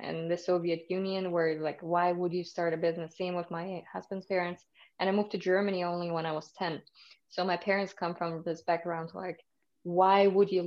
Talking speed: 215 wpm